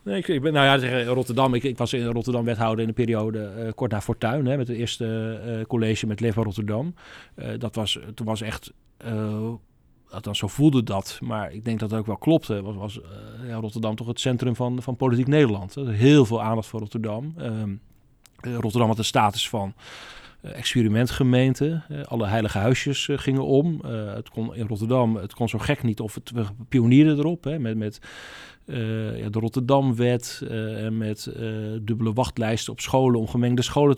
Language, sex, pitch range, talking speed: Dutch, male, 110-130 Hz, 190 wpm